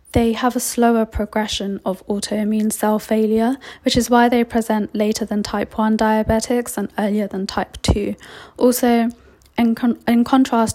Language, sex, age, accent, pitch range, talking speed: English, female, 10-29, British, 210-240 Hz, 155 wpm